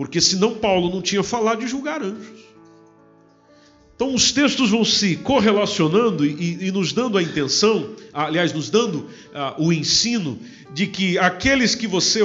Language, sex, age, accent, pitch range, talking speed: Portuguese, male, 50-69, Brazilian, 170-220 Hz, 150 wpm